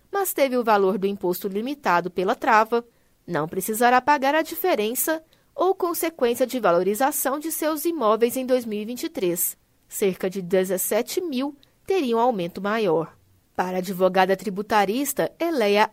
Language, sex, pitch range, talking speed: Portuguese, female, 200-275 Hz, 130 wpm